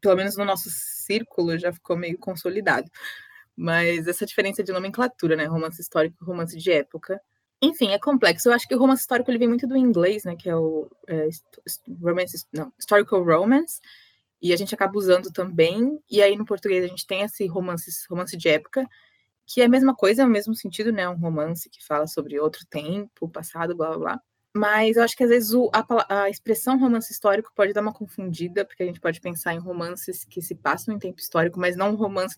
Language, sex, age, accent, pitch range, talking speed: Portuguese, female, 20-39, Brazilian, 175-235 Hz, 215 wpm